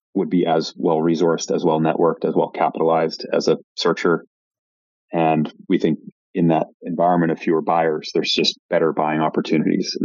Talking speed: 155 wpm